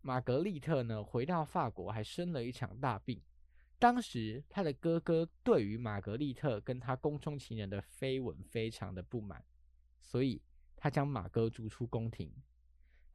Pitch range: 105-165 Hz